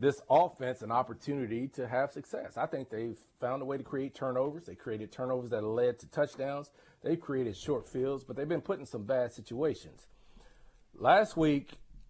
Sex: male